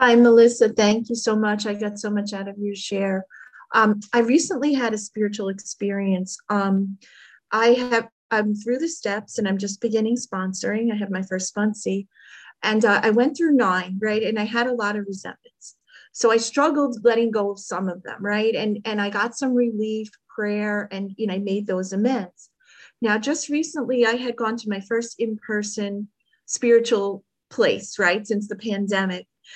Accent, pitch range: American, 205-245 Hz